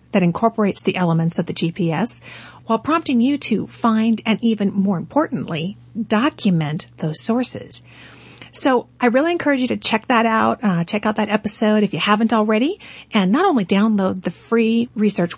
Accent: American